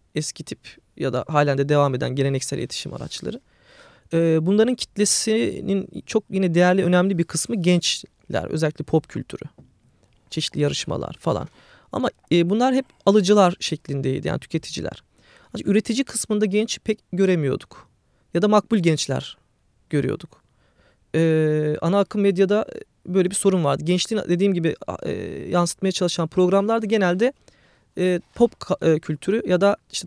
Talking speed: 125 wpm